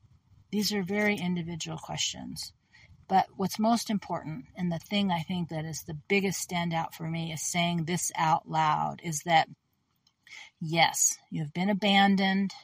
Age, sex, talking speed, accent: 40-59, female, 150 wpm, American